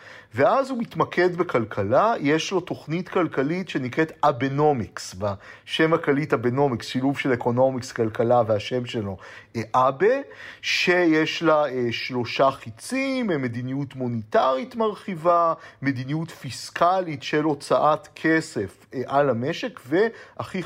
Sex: male